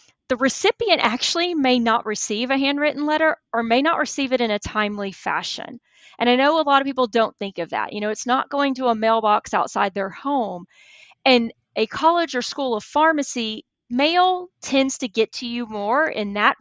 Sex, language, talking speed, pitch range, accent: female, English, 200 wpm, 210-280 Hz, American